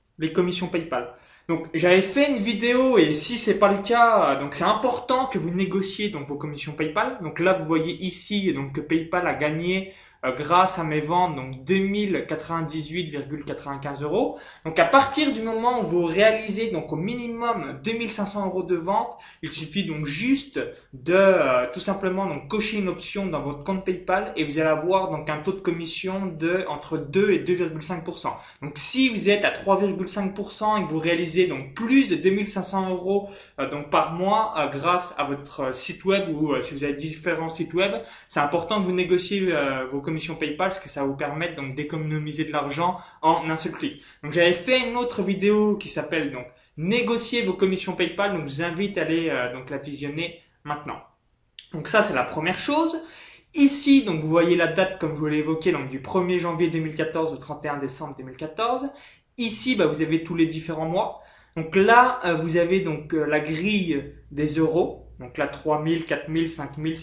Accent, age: French, 20-39